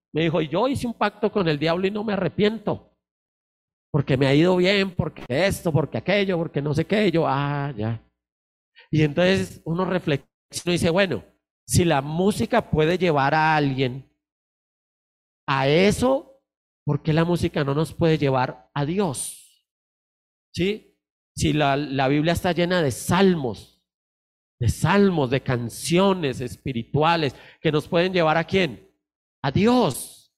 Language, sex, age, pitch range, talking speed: Spanish, male, 40-59, 145-195 Hz, 150 wpm